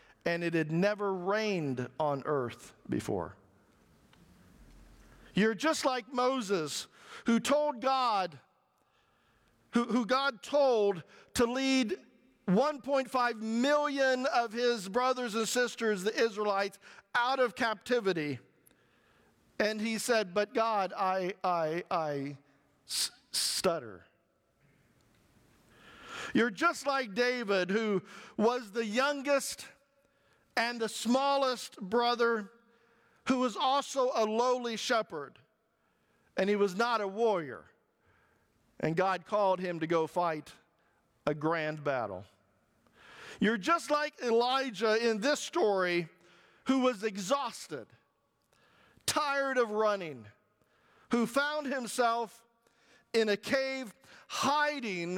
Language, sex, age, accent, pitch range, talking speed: English, male, 50-69, American, 190-255 Hz, 105 wpm